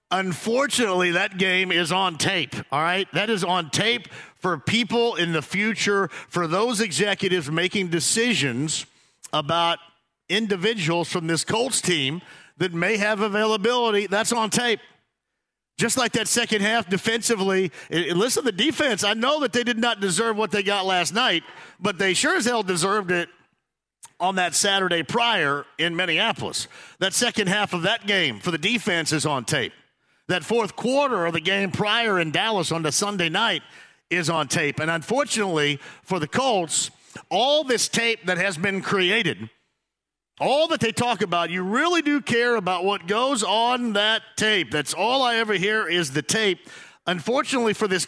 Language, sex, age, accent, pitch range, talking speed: English, male, 50-69, American, 175-230 Hz, 170 wpm